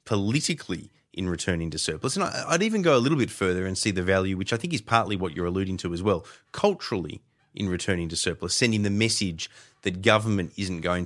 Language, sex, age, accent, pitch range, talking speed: English, male, 20-39, Australian, 90-110 Hz, 215 wpm